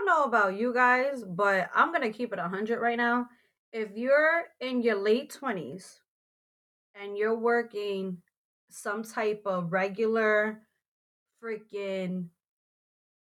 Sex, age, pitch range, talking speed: female, 20-39, 185-240 Hz, 120 wpm